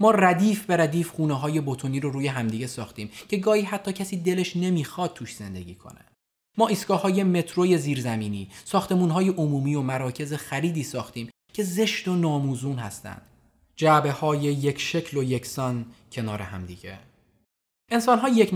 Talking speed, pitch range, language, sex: 150 wpm, 120-175 Hz, Persian, male